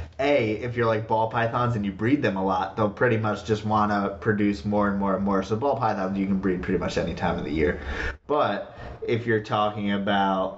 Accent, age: American, 20-39